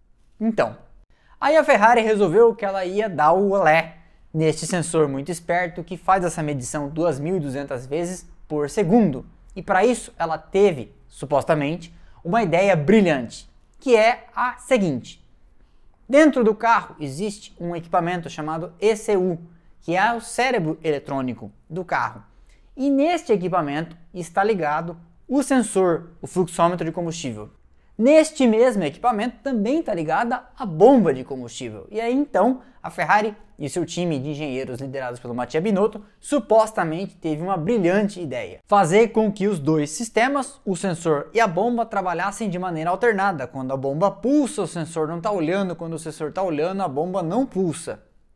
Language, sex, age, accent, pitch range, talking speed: Portuguese, male, 20-39, Brazilian, 155-215 Hz, 155 wpm